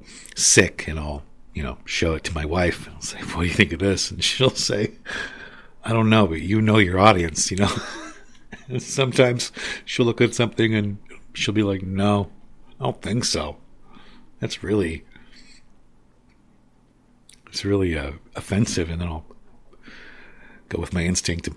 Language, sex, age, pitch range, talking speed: English, male, 50-69, 85-115 Hz, 165 wpm